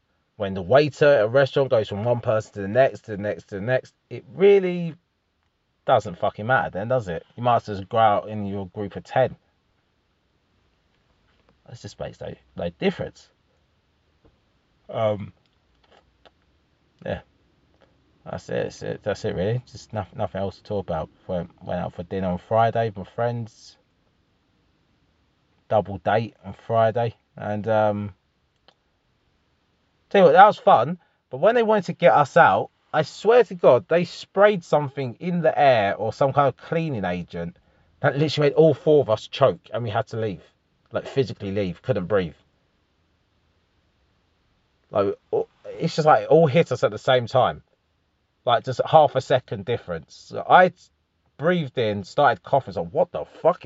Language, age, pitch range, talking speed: English, 20-39, 95-150 Hz, 170 wpm